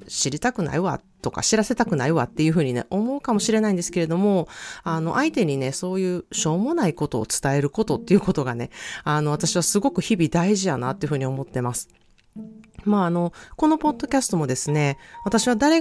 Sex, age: female, 30-49